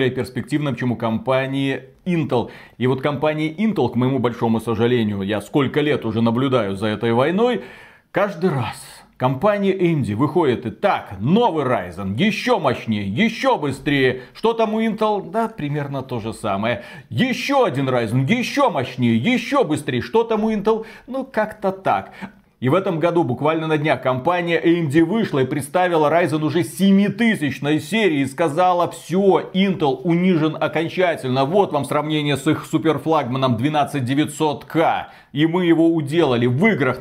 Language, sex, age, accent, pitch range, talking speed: Russian, male, 40-59, native, 125-175 Hz, 150 wpm